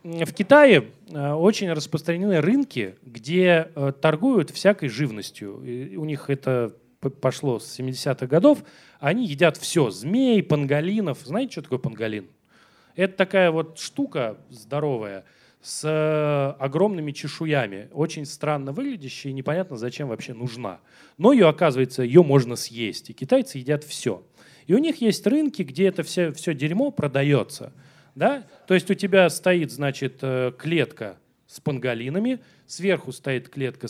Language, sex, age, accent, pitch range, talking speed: Russian, male, 30-49, native, 130-185 Hz, 135 wpm